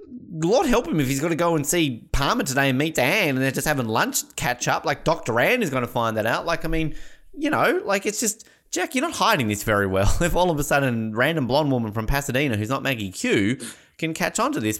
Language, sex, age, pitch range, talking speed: English, male, 20-39, 105-150 Hz, 265 wpm